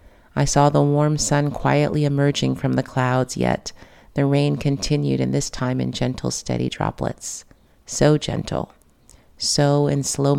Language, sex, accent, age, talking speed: English, female, American, 40-59, 150 wpm